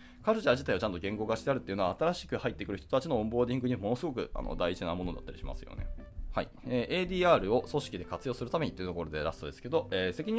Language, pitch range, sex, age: Japanese, 90-150 Hz, male, 20-39